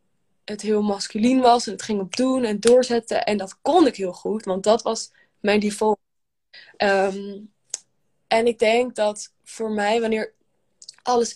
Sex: female